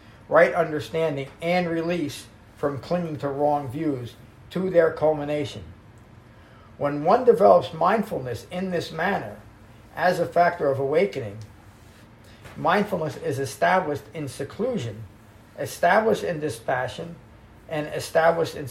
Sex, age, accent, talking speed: male, 50-69, American, 110 wpm